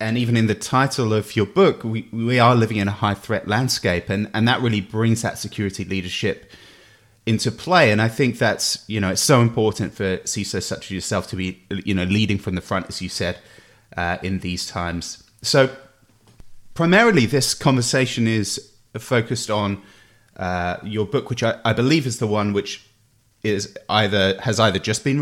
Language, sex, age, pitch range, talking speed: English, male, 30-49, 100-120 Hz, 190 wpm